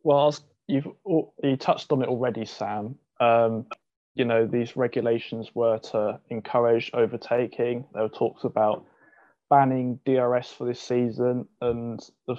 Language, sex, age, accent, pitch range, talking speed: English, male, 20-39, British, 110-125 Hz, 135 wpm